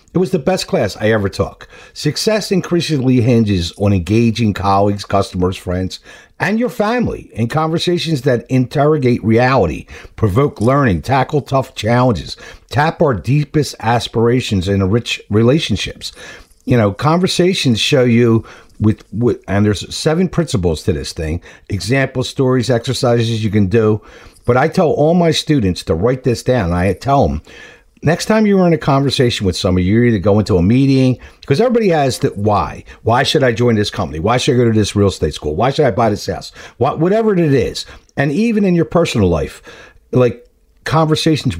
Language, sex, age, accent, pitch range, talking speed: English, male, 50-69, American, 100-150 Hz, 175 wpm